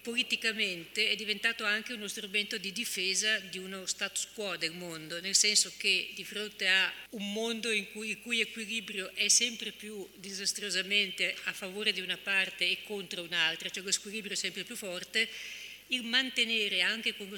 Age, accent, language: 50-69, native, Italian